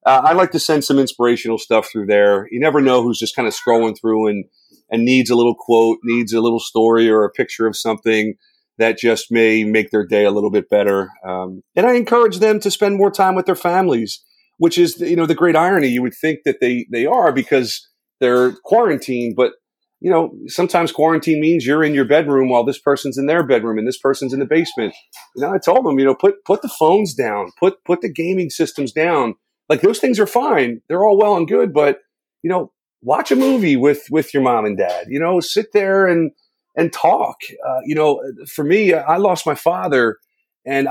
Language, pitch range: English, 120-175 Hz